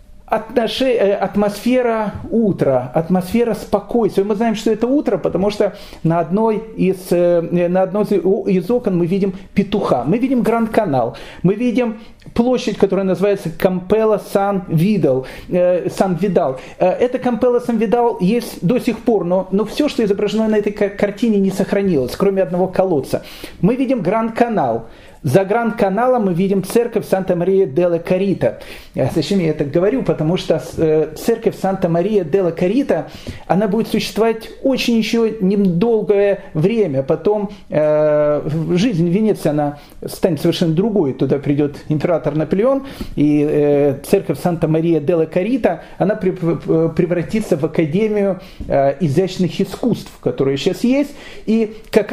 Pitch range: 175-220 Hz